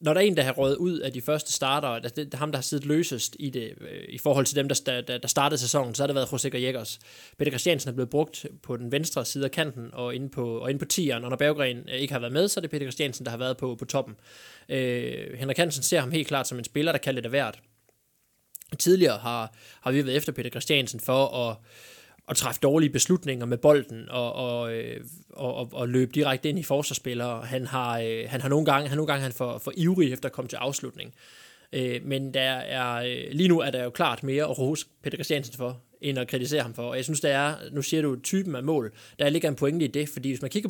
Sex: male